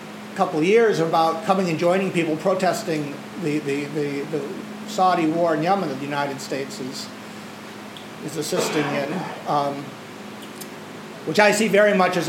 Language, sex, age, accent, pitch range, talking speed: English, male, 50-69, American, 150-200 Hz, 155 wpm